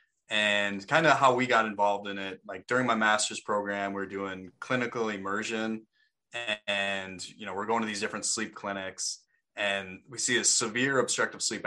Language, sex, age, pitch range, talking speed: English, male, 20-39, 100-115 Hz, 190 wpm